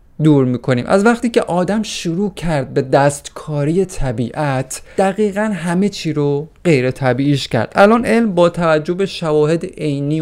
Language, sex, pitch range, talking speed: Persian, male, 140-195 Hz, 145 wpm